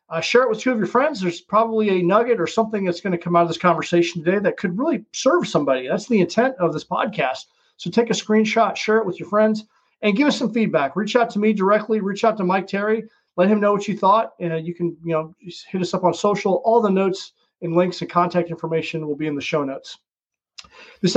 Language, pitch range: English, 165-215 Hz